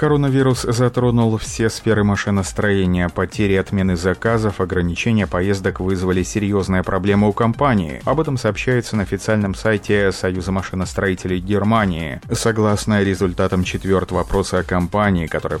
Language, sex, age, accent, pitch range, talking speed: Russian, male, 30-49, native, 90-110 Hz, 120 wpm